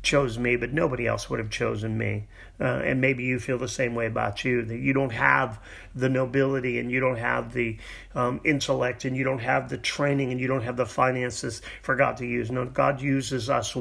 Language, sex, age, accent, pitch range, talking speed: English, male, 40-59, American, 115-135 Hz, 225 wpm